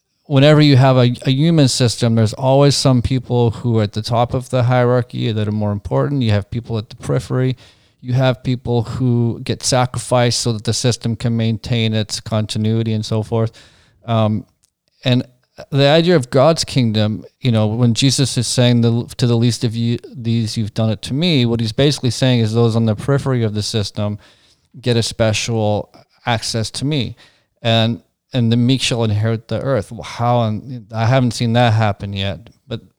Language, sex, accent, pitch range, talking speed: English, male, American, 110-125 Hz, 195 wpm